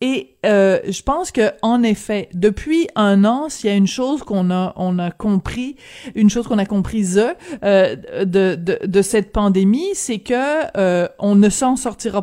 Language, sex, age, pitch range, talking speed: French, female, 30-49, 195-235 Hz, 185 wpm